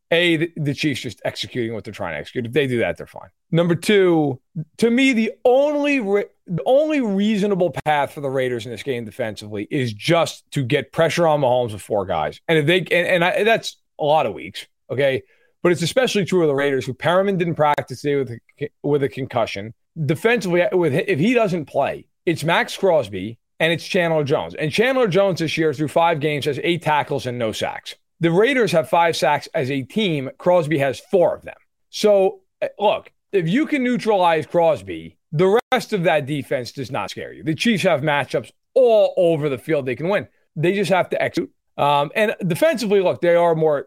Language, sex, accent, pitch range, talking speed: English, male, American, 140-185 Hz, 210 wpm